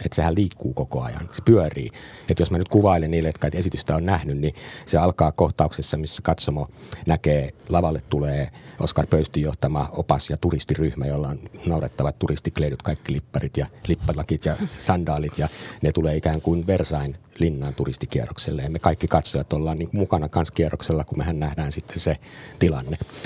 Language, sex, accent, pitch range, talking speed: Finnish, male, native, 75-90 Hz, 170 wpm